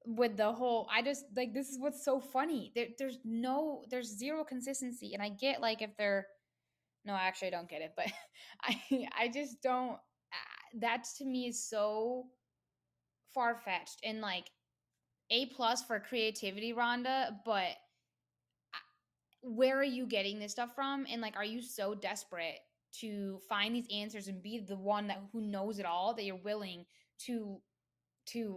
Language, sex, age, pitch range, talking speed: English, female, 10-29, 195-245 Hz, 170 wpm